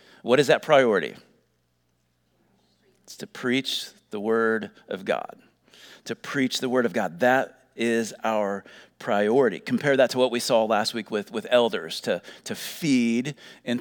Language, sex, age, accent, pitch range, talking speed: English, male, 40-59, American, 110-135 Hz, 160 wpm